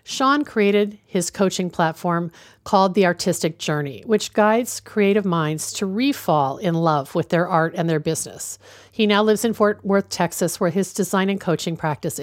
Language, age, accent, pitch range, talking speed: English, 50-69, American, 165-210 Hz, 175 wpm